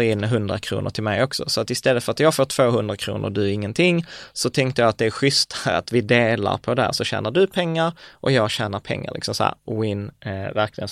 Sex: male